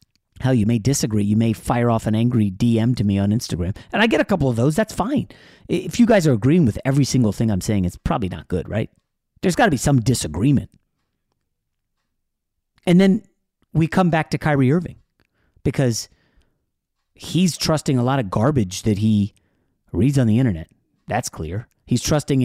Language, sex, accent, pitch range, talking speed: English, male, American, 105-145 Hz, 190 wpm